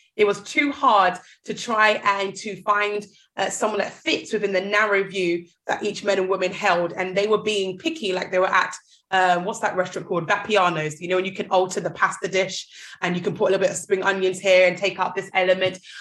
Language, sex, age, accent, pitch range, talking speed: English, female, 20-39, British, 185-215 Hz, 235 wpm